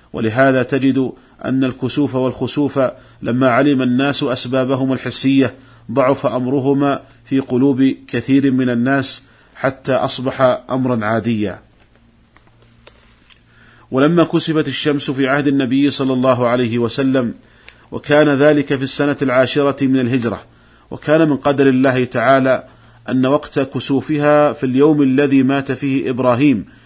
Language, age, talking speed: Arabic, 40-59, 115 wpm